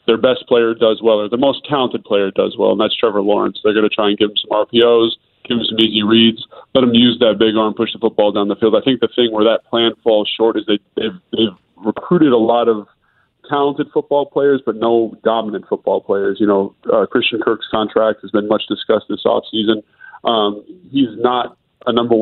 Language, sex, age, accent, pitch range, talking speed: English, male, 20-39, American, 105-120 Hz, 225 wpm